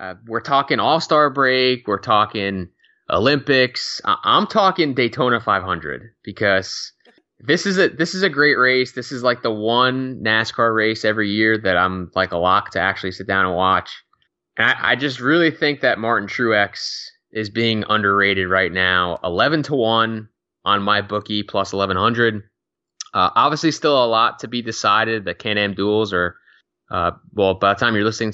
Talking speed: 180 wpm